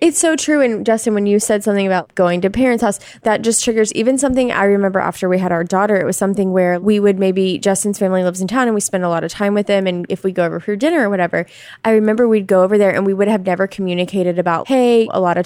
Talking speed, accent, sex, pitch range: 285 wpm, American, female, 175-215 Hz